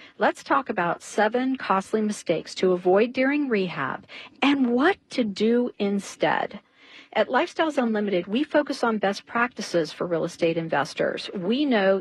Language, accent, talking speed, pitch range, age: English, American, 145 wpm, 175-220 Hz, 50-69